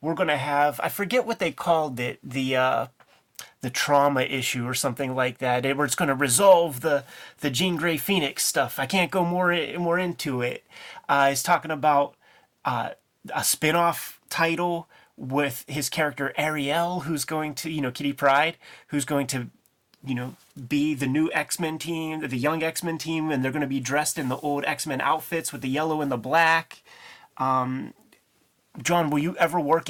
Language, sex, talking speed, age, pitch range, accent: English, male, 185 wpm, 30-49, 135-165 Hz, American